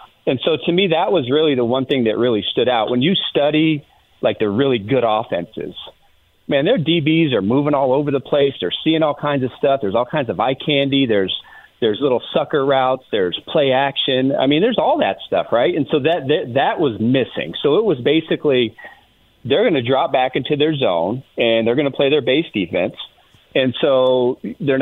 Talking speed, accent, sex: 215 wpm, American, male